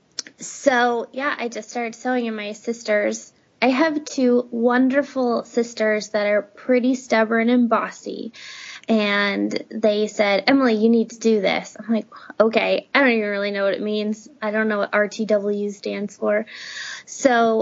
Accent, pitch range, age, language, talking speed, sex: American, 210-255 Hz, 20-39, English, 165 wpm, female